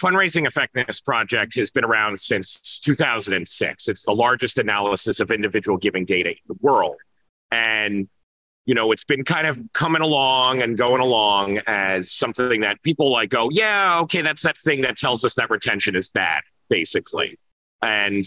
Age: 30-49